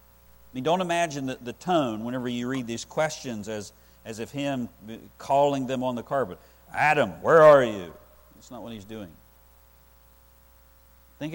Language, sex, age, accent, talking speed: English, male, 50-69, American, 160 wpm